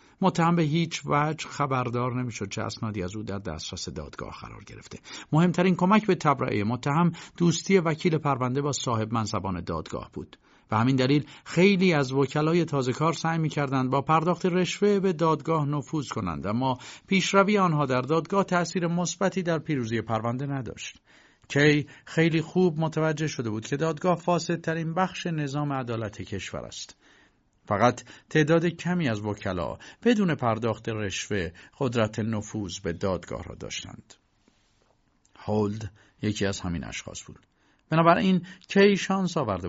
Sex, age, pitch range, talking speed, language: male, 50-69, 110-165 Hz, 140 wpm, Persian